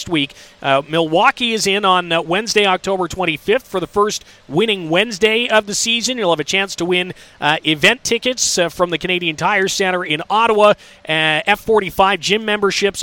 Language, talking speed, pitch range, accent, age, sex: English, 180 wpm, 165-210 Hz, American, 30-49, male